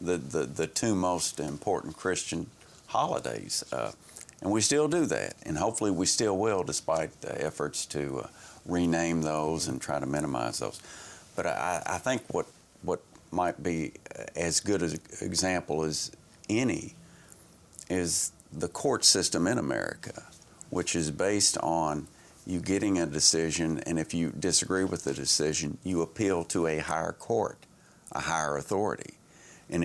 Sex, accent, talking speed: male, American, 155 wpm